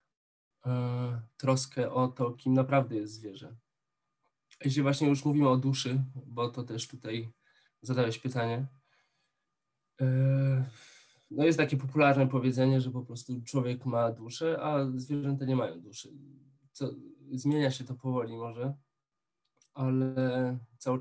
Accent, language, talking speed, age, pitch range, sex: native, Polish, 120 wpm, 20-39, 125-140 Hz, male